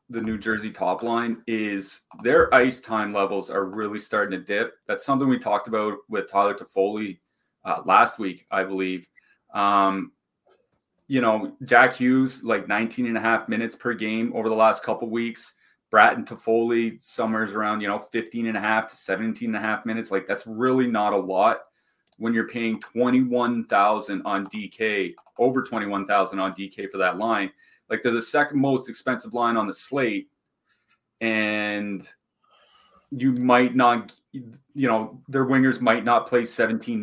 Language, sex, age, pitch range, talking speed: English, male, 30-49, 105-125 Hz, 170 wpm